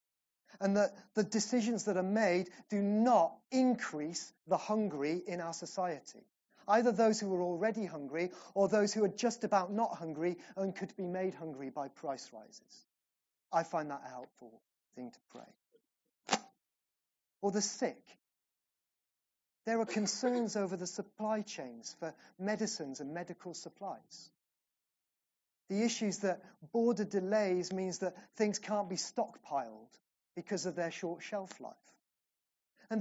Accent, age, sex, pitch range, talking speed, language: British, 30-49, male, 170-220 Hz, 140 wpm, English